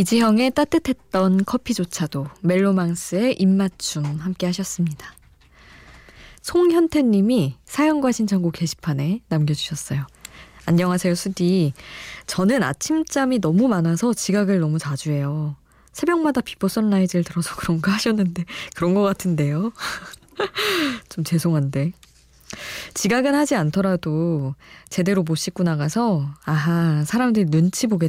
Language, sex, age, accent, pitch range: Korean, female, 20-39, native, 160-225 Hz